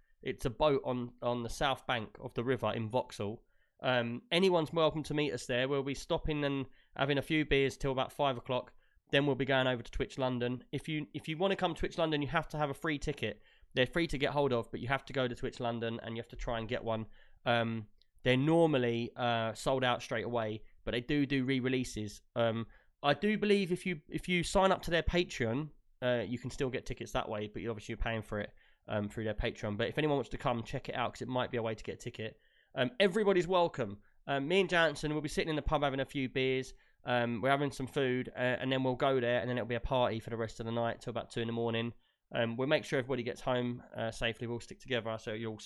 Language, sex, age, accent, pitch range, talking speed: English, male, 20-39, British, 115-145 Hz, 265 wpm